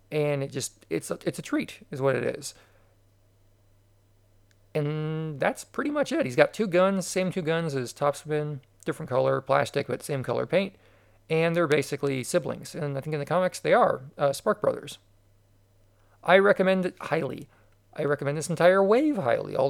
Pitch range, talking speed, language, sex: 110-160 Hz, 175 wpm, English, male